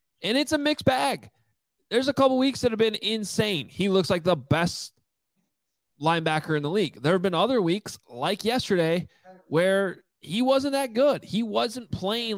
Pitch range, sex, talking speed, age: 145-190 Hz, male, 180 wpm, 20-39